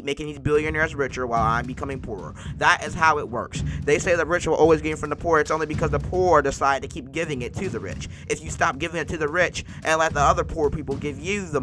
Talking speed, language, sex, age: 275 wpm, English, male, 20-39